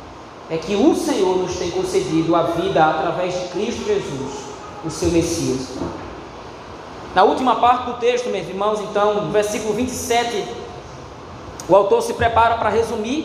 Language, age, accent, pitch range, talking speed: Portuguese, 20-39, Brazilian, 180-230 Hz, 150 wpm